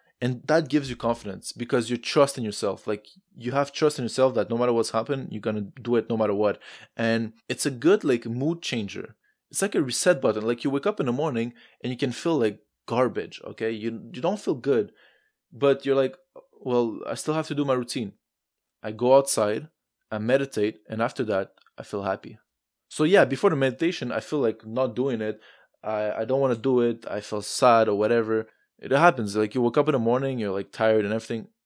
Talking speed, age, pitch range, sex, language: 225 wpm, 20-39, 110-140 Hz, male, English